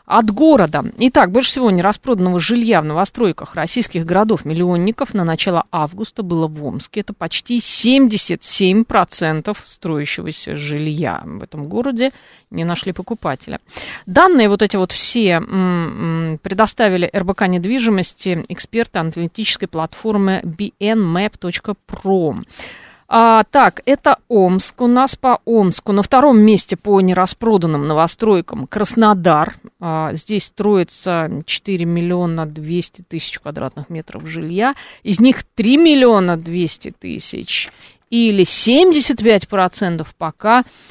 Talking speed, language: 110 wpm, Russian